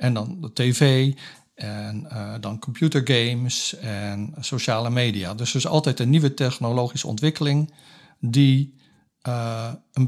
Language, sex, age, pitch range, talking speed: Dutch, male, 50-69, 115-140 Hz, 130 wpm